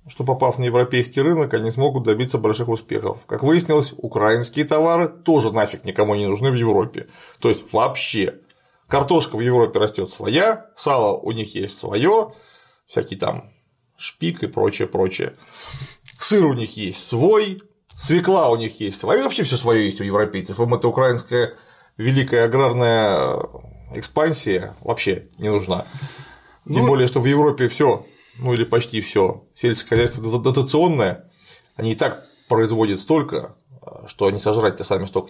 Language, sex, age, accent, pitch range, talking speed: Russian, male, 30-49, native, 110-140 Hz, 150 wpm